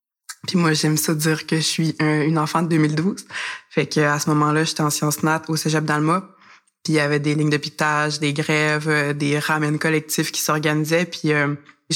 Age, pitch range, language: 20-39, 150-160 Hz, French